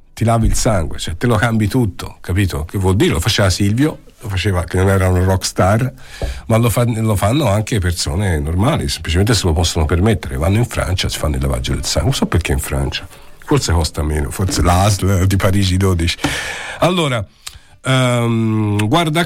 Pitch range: 95-125 Hz